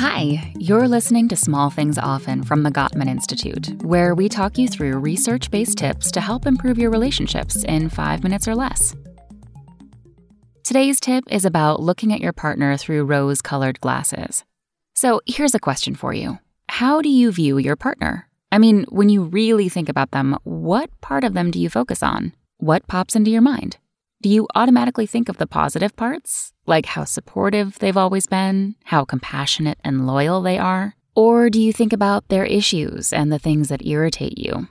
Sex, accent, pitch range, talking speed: female, American, 150-225 Hz, 180 wpm